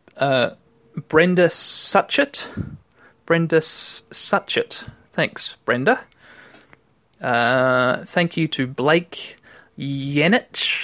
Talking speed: 80 wpm